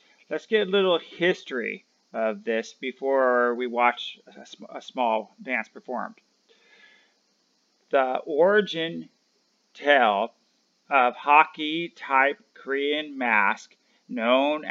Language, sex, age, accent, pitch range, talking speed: English, male, 40-59, American, 130-180 Hz, 100 wpm